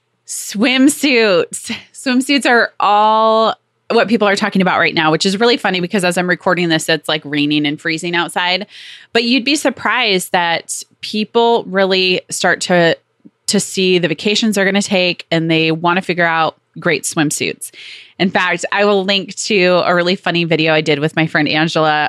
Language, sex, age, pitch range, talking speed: English, female, 20-39, 160-210 Hz, 180 wpm